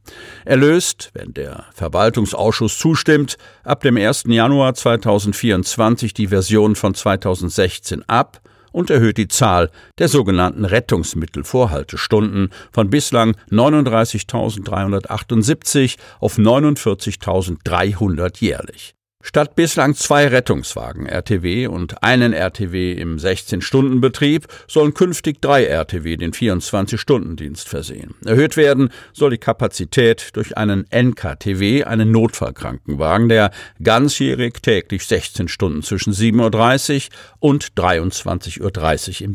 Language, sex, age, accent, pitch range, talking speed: German, male, 50-69, German, 95-130 Hz, 105 wpm